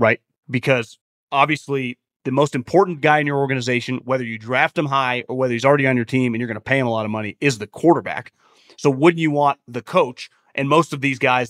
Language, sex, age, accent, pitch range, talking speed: English, male, 30-49, American, 140-205 Hz, 240 wpm